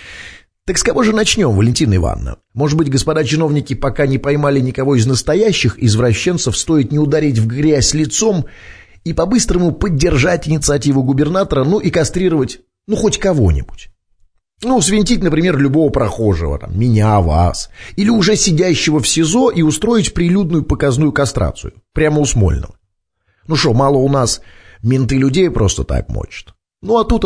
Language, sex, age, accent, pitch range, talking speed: Russian, male, 30-49, native, 105-160 Hz, 150 wpm